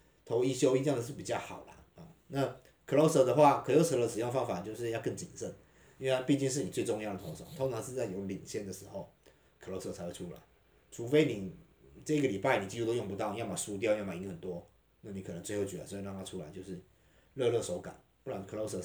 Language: Chinese